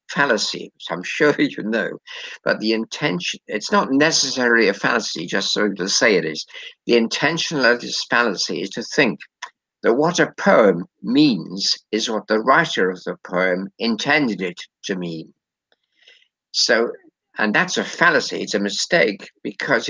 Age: 60-79